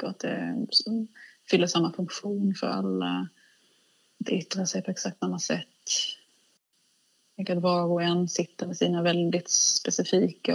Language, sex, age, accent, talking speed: Swedish, female, 20-39, native, 140 wpm